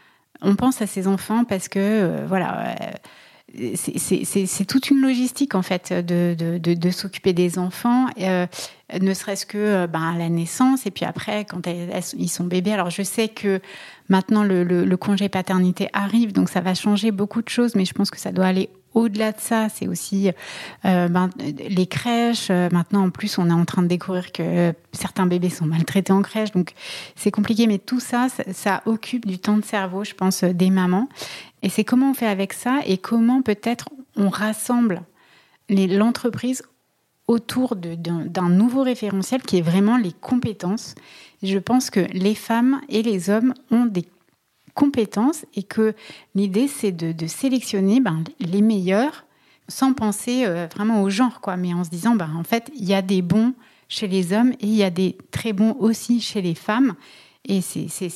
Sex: female